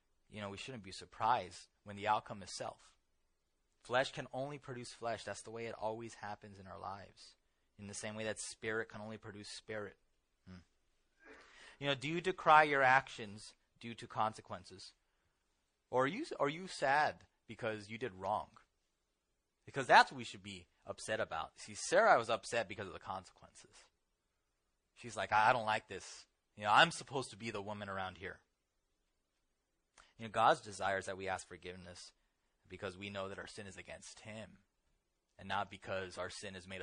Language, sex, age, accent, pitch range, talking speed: English, male, 30-49, American, 95-120 Hz, 180 wpm